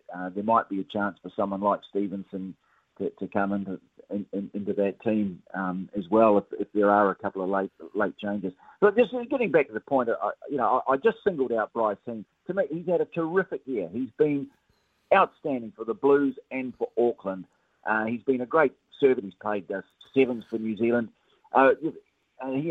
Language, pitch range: English, 100-135 Hz